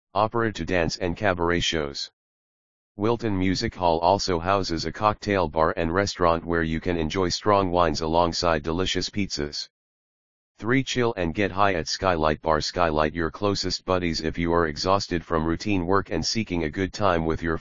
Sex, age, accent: male, 40-59, American